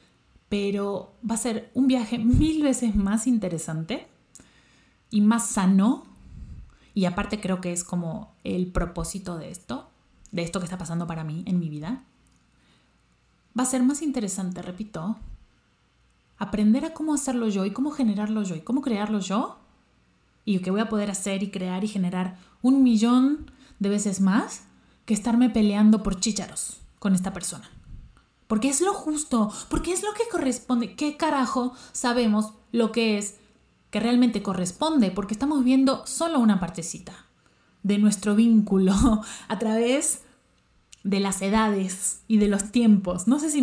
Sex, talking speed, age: female, 155 wpm, 30-49